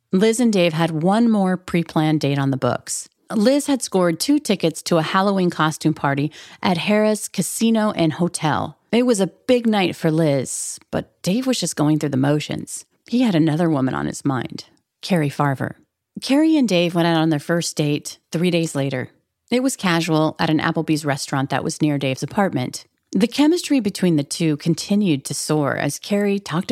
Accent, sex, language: American, female, English